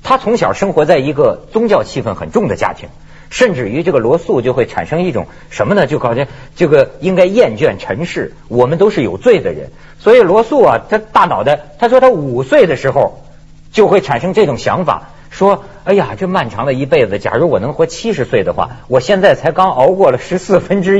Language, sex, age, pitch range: Chinese, male, 50-69, 175-250 Hz